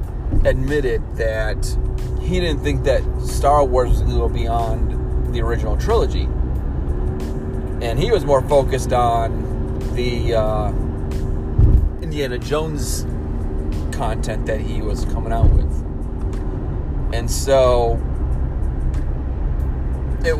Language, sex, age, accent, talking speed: English, male, 30-49, American, 105 wpm